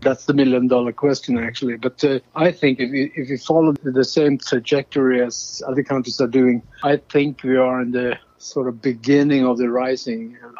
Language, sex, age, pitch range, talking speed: English, male, 60-79, 120-140 Hz, 190 wpm